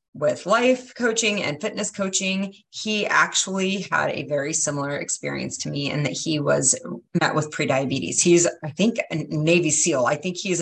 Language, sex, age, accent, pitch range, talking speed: English, female, 30-49, American, 145-195 Hz, 175 wpm